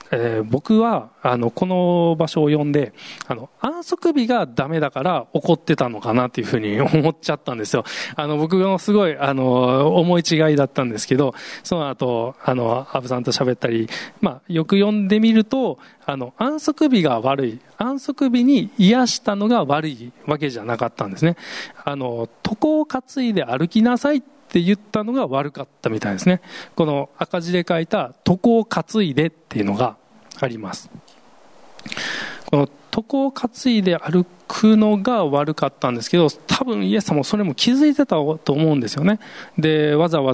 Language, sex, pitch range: Japanese, male, 135-210 Hz